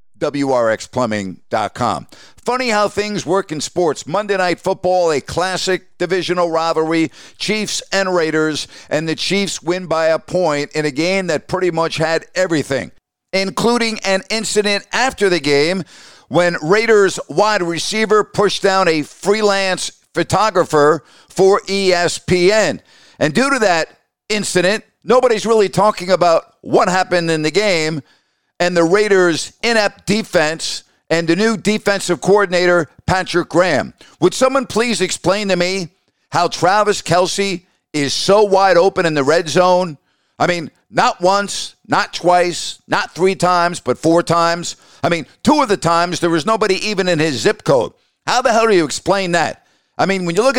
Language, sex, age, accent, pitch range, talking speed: English, male, 50-69, American, 165-200 Hz, 155 wpm